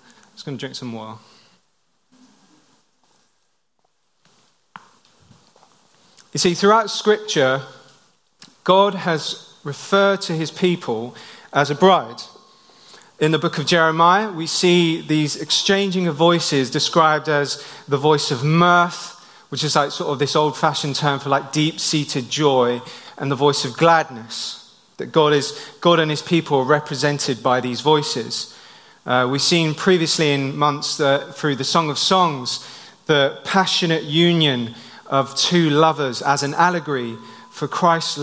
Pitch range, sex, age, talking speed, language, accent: 140-170 Hz, male, 30-49, 140 wpm, English, British